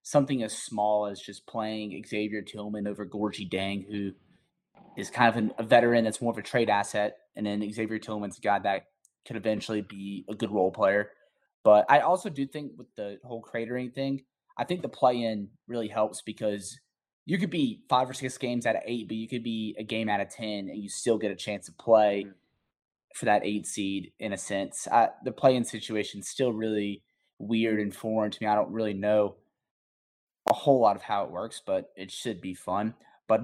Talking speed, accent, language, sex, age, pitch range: 210 wpm, American, English, male, 20-39, 105-120 Hz